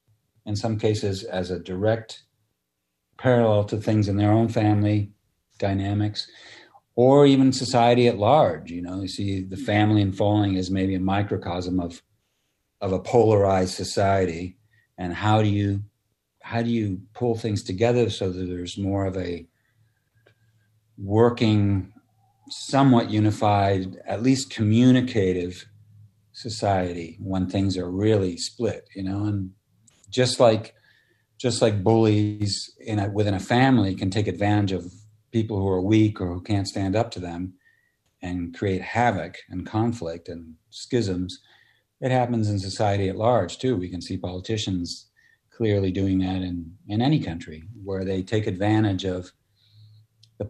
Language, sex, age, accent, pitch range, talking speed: English, male, 50-69, American, 95-110 Hz, 145 wpm